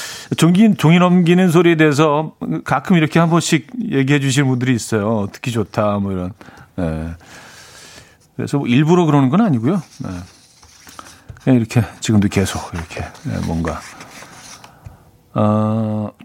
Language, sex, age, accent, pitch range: Korean, male, 40-59, native, 115-165 Hz